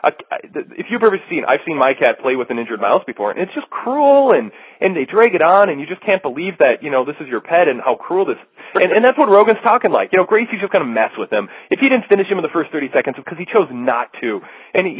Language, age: English, 30-49